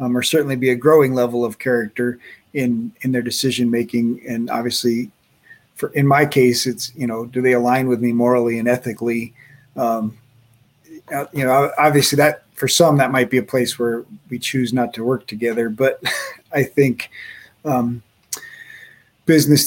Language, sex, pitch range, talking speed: English, male, 120-140 Hz, 170 wpm